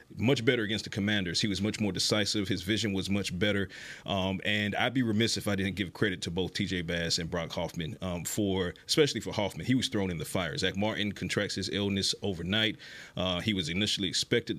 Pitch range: 95-105 Hz